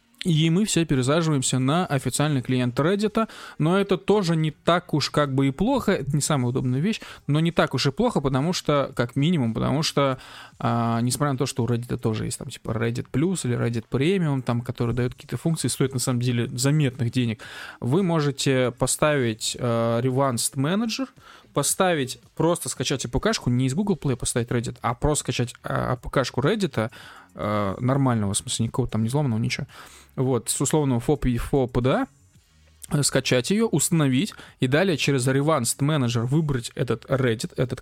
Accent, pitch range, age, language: native, 125-160 Hz, 20-39, Russian